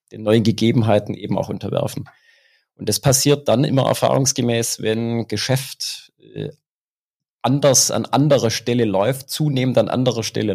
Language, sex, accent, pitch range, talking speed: German, male, German, 105-130 Hz, 130 wpm